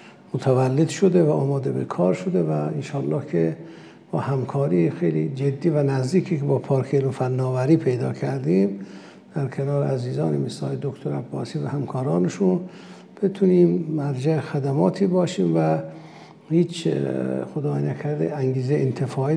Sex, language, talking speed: male, Persian, 125 wpm